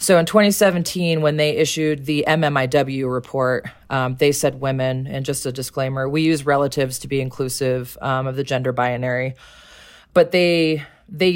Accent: American